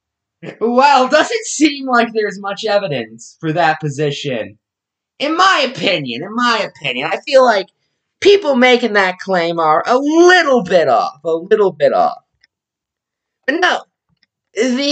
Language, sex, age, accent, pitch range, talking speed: English, male, 20-39, American, 160-265 Hz, 140 wpm